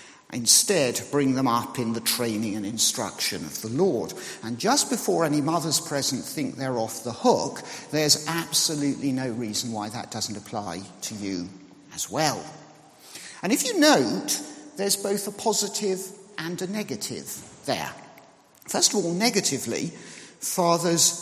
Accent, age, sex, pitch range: British, 50-69, male, 140-205 Hz